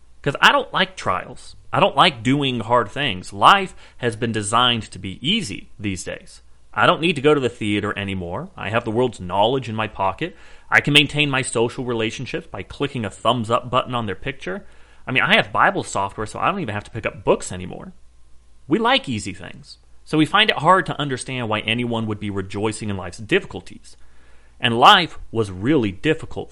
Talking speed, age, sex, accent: 210 wpm, 30-49, male, American